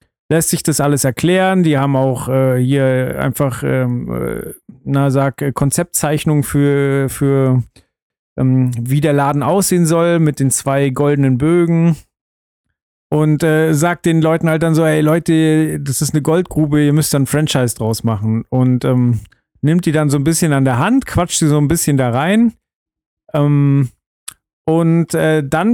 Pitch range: 140-175 Hz